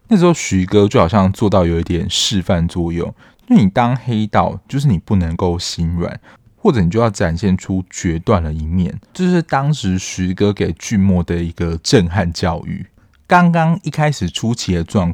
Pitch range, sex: 85-110 Hz, male